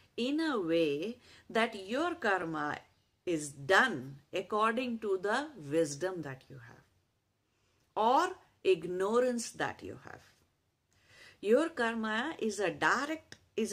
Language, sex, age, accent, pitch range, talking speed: English, female, 50-69, Indian, 145-185 Hz, 105 wpm